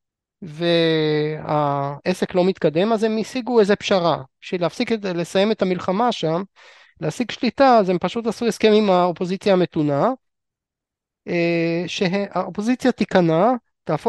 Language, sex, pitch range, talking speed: Hebrew, male, 165-210 Hz, 110 wpm